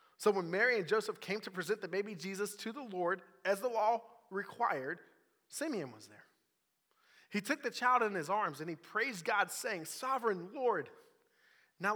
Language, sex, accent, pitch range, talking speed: English, male, American, 145-205 Hz, 180 wpm